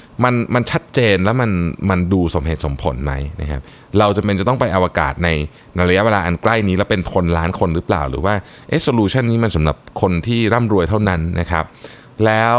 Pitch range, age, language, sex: 85-120 Hz, 20-39, Thai, male